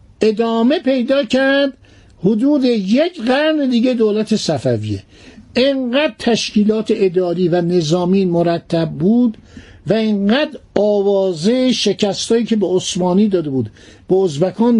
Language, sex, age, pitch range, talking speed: Persian, male, 60-79, 160-225 Hz, 110 wpm